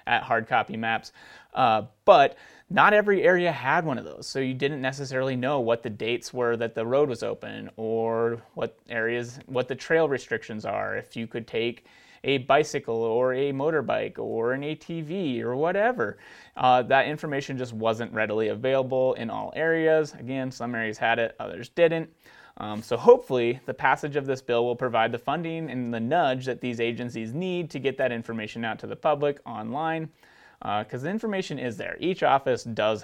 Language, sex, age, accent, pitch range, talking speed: English, male, 30-49, American, 115-140 Hz, 185 wpm